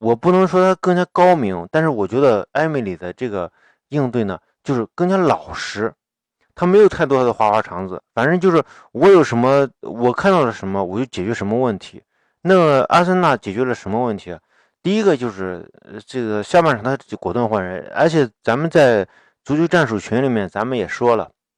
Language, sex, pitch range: Chinese, male, 95-140 Hz